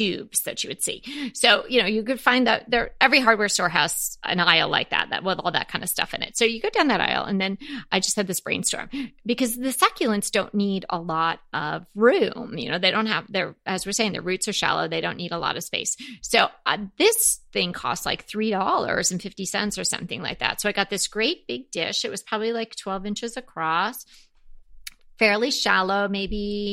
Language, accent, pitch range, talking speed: English, American, 190-235 Hz, 225 wpm